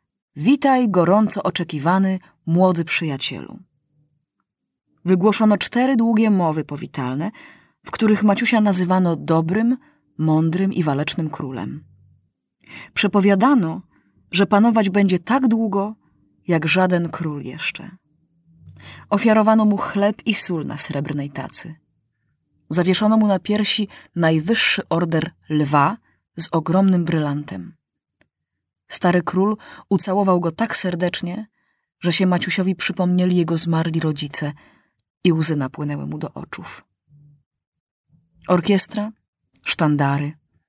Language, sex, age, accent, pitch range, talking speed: Polish, female, 30-49, native, 155-205 Hz, 100 wpm